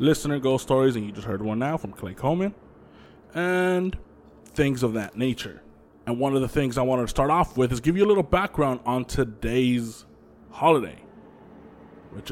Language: English